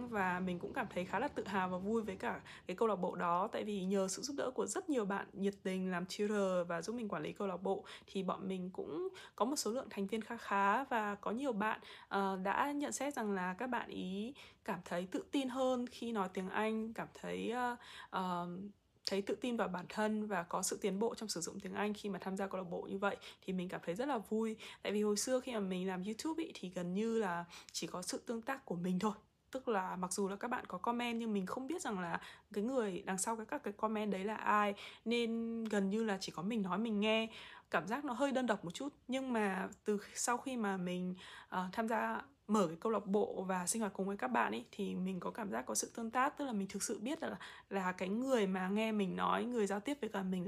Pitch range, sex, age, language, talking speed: 190-230 Hz, female, 20-39, Vietnamese, 265 wpm